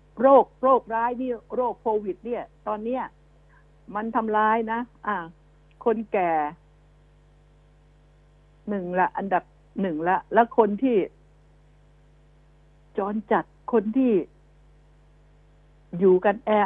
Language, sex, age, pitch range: Thai, female, 60-79, 185-220 Hz